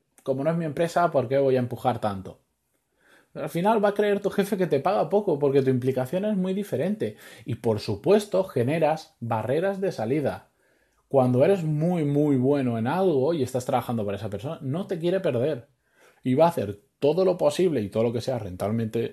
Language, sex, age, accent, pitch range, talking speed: Spanish, male, 20-39, Spanish, 120-170 Hz, 205 wpm